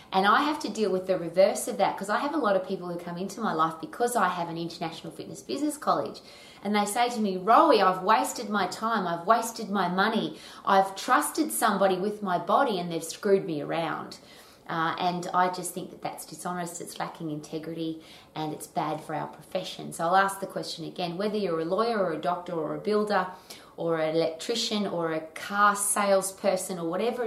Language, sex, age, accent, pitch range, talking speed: English, female, 20-39, Australian, 165-200 Hz, 215 wpm